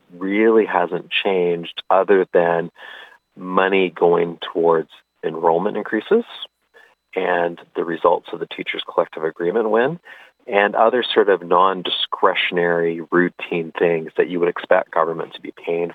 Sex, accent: male, American